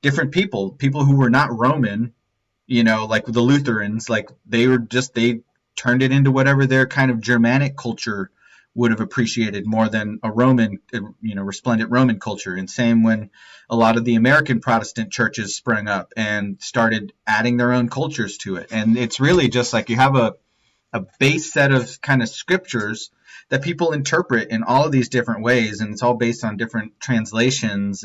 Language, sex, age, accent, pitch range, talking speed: English, male, 30-49, American, 110-130 Hz, 190 wpm